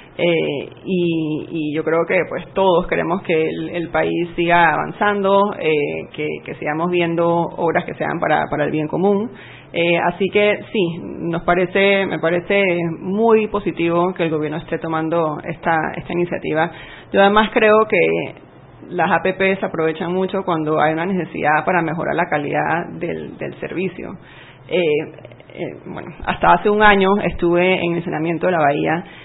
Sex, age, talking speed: female, 30-49, 165 wpm